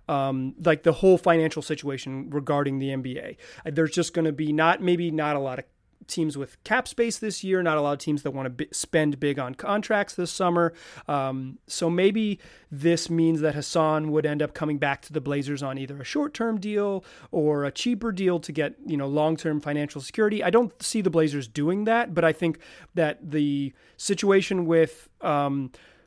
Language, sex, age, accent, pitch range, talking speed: English, male, 30-49, American, 145-175 Hz, 205 wpm